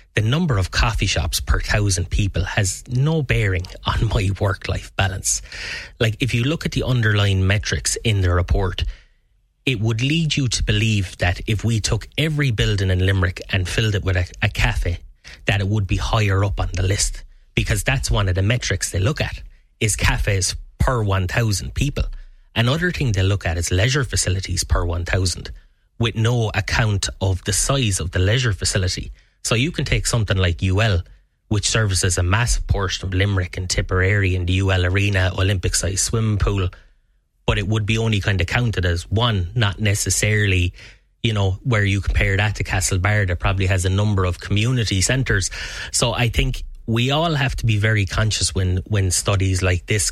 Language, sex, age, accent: English, male, 30-49, Irish